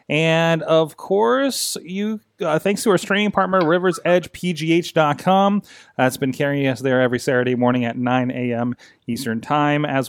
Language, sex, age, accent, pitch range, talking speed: English, male, 30-49, American, 120-165 Hz, 155 wpm